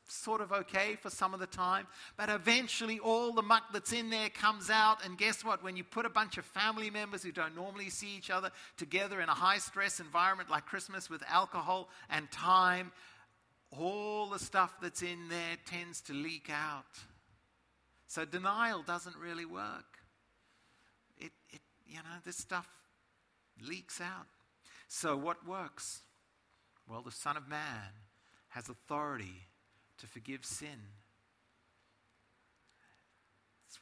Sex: male